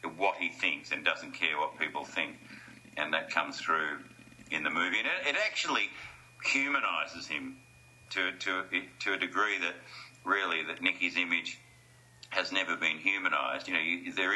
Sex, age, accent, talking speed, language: male, 50-69, Australian, 150 wpm, English